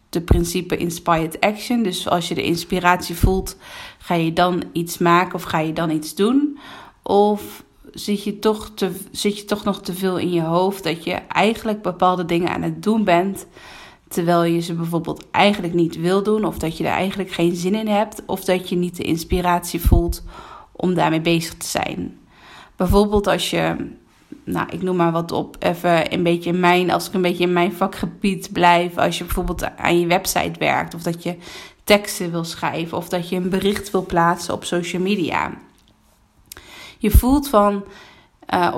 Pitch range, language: 170-200 Hz, Dutch